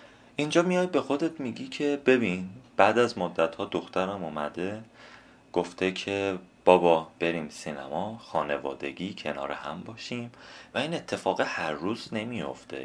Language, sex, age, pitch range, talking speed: Persian, male, 30-49, 80-115 Hz, 130 wpm